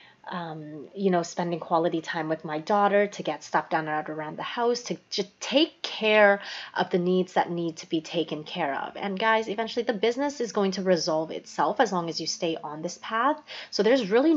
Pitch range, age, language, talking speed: 180-235 Hz, 20-39, English, 215 wpm